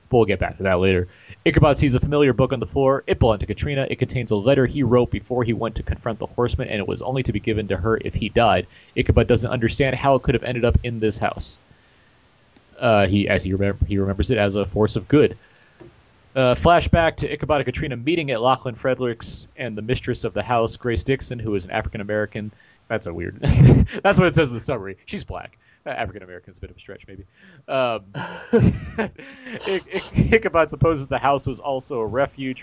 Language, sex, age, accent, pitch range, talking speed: English, male, 30-49, American, 105-130 Hz, 215 wpm